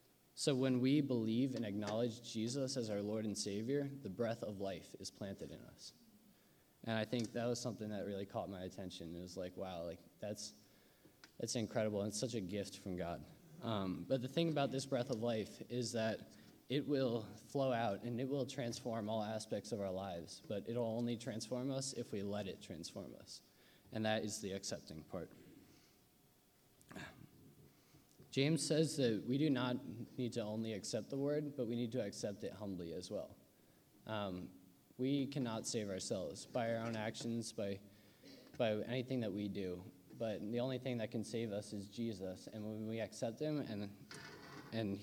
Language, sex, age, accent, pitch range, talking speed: English, male, 20-39, American, 105-125 Hz, 190 wpm